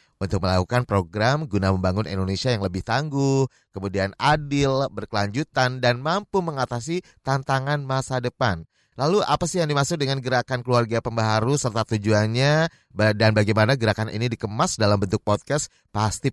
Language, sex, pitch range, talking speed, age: Indonesian, male, 115-150 Hz, 140 wpm, 30-49